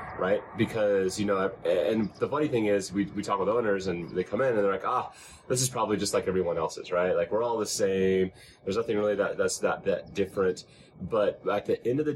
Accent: American